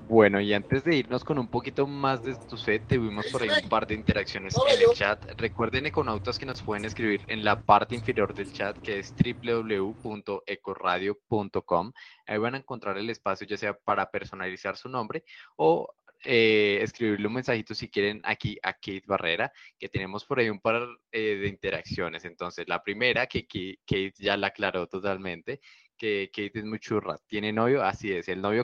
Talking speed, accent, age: 190 wpm, Colombian, 20-39